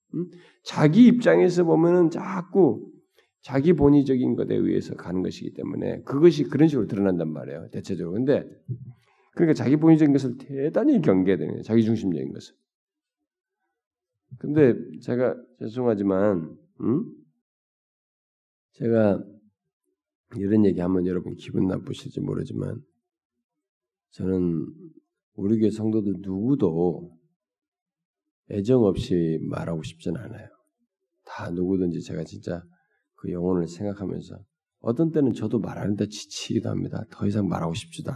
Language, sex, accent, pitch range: Korean, male, native, 95-150 Hz